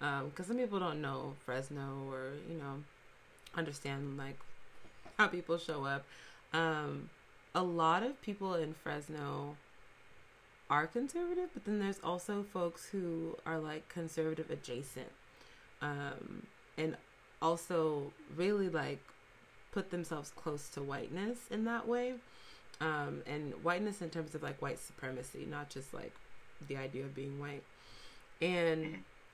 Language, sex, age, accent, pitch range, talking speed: English, female, 20-39, American, 150-190 Hz, 135 wpm